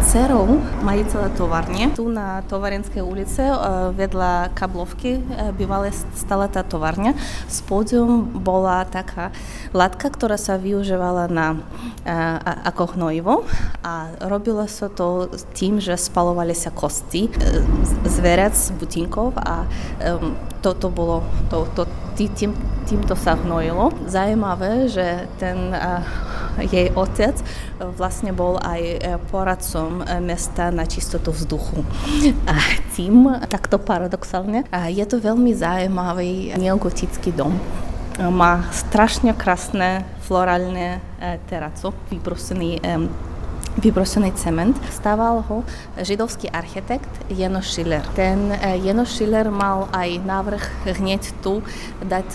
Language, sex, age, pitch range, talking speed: Slovak, female, 20-39, 175-205 Hz, 110 wpm